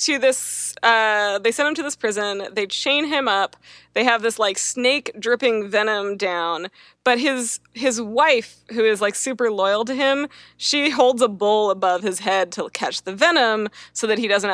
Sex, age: female, 20-39